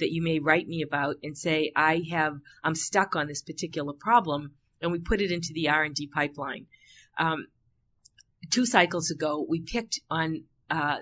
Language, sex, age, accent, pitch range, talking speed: English, female, 40-59, American, 155-195 Hz, 175 wpm